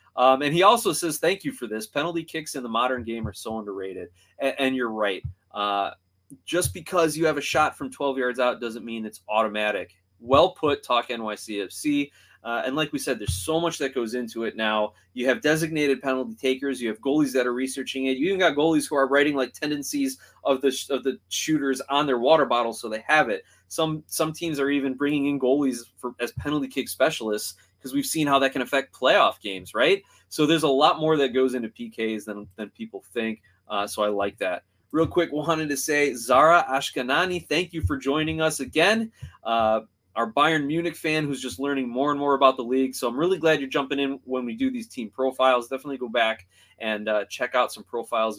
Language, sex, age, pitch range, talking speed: English, male, 20-39, 115-150 Hz, 220 wpm